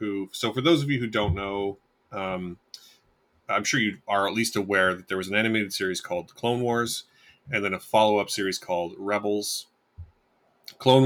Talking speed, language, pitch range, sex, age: 180 wpm, English, 95-115 Hz, male, 30-49